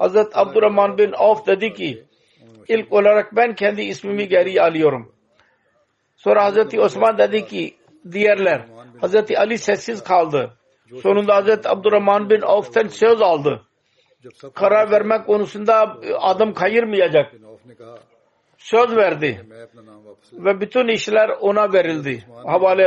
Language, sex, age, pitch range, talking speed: Turkish, male, 60-79, 170-210 Hz, 115 wpm